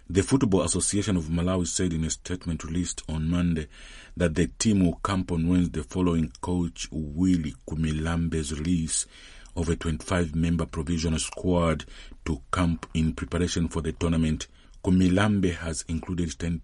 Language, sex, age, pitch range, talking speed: English, male, 50-69, 80-90 Hz, 145 wpm